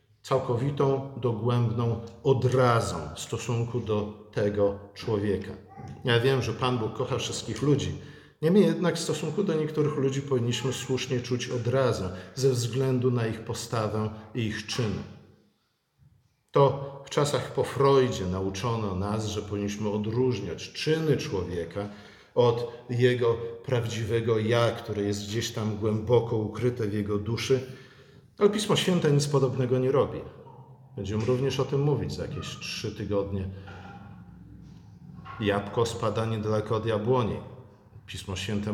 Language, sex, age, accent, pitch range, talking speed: Polish, male, 50-69, native, 105-135 Hz, 130 wpm